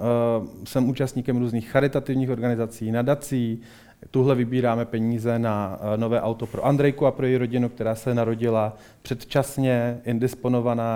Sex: male